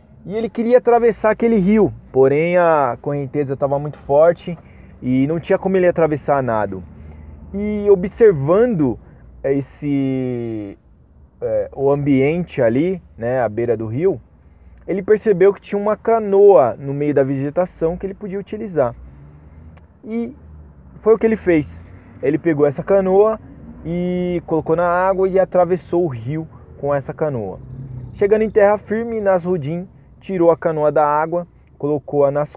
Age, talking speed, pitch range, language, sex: 20-39, 145 wpm, 125-180 Hz, English, male